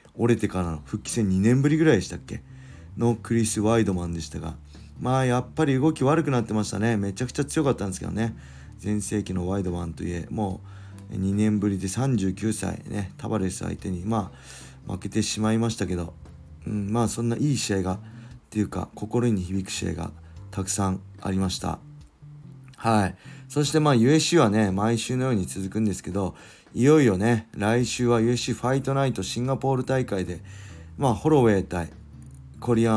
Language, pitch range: Japanese, 95-120 Hz